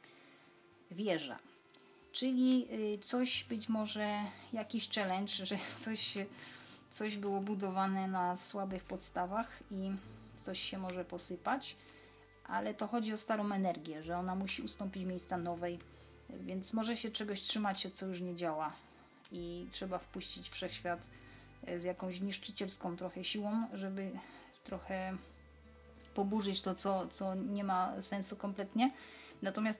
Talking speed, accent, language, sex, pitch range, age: 125 wpm, native, Polish, female, 180-215 Hz, 30-49